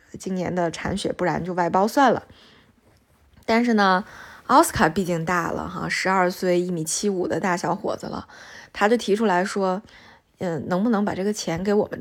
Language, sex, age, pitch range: Chinese, female, 20-39, 175-210 Hz